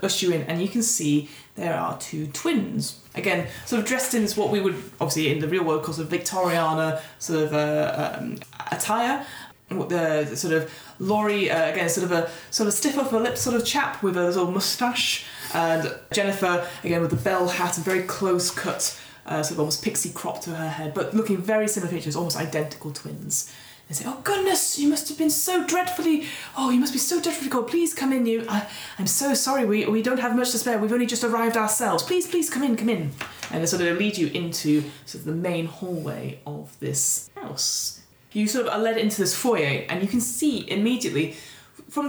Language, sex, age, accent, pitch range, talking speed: English, female, 20-39, British, 160-220 Hz, 220 wpm